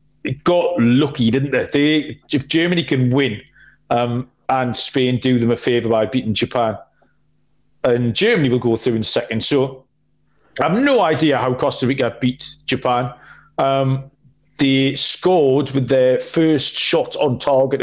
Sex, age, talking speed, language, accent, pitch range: male, 40-59, 150 wpm, English, British, 125-155 Hz